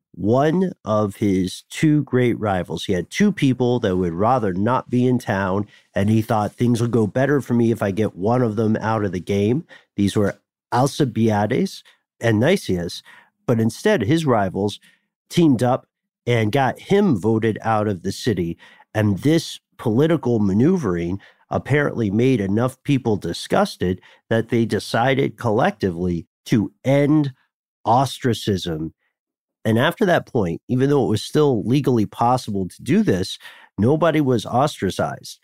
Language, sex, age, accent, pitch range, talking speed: English, male, 50-69, American, 100-130 Hz, 150 wpm